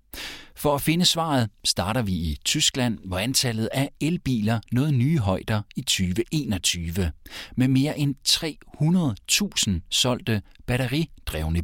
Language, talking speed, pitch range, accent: Danish, 120 wpm, 95-140 Hz, native